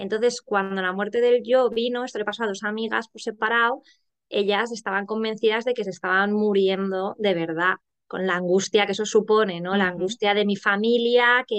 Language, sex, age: Spanish, female, 20-39